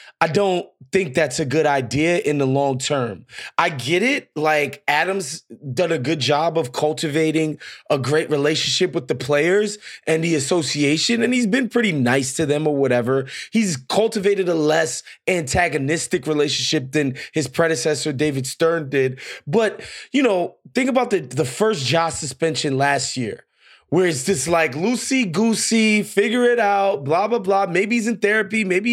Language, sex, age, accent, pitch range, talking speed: English, male, 20-39, American, 150-205 Hz, 170 wpm